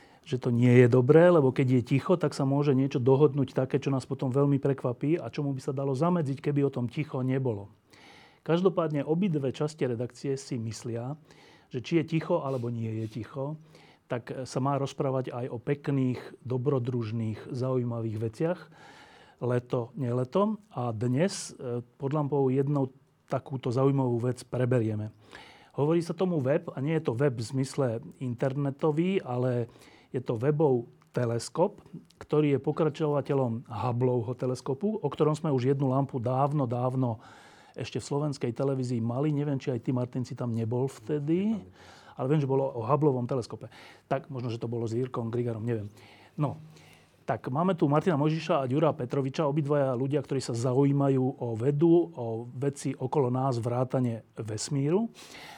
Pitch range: 125-150 Hz